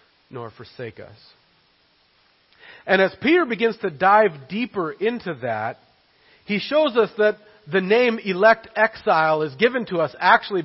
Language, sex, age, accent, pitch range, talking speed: English, male, 40-59, American, 150-215 Hz, 140 wpm